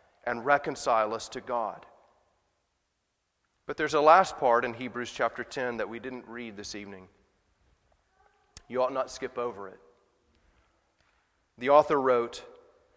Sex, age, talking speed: male, 30-49, 135 wpm